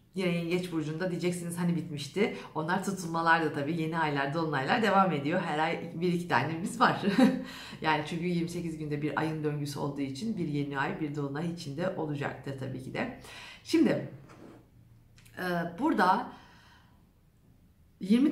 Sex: female